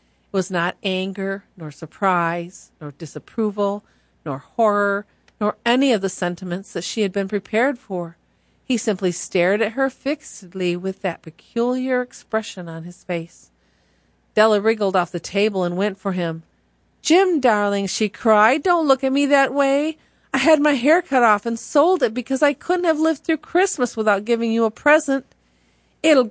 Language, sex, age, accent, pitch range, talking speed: English, female, 40-59, American, 190-275 Hz, 170 wpm